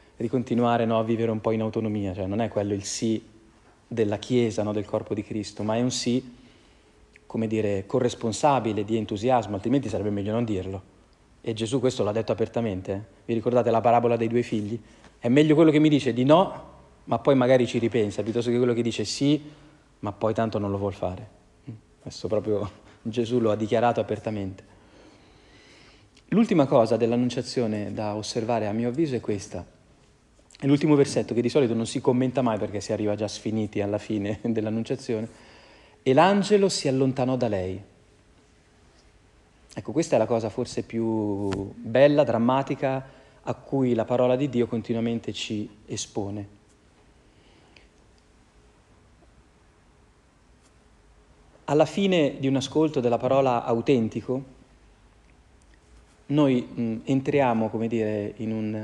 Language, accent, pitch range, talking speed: Italian, native, 105-125 Hz, 150 wpm